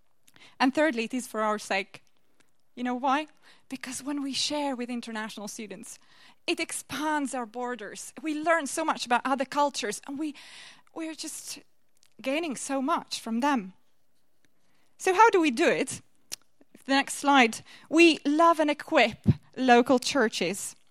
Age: 20-39